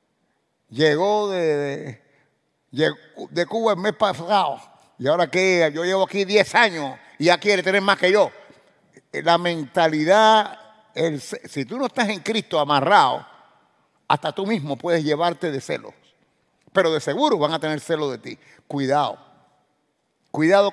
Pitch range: 155-220 Hz